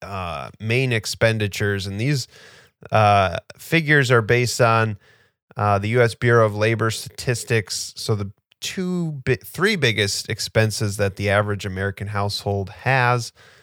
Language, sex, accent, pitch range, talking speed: English, male, American, 100-120 Hz, 130 wpm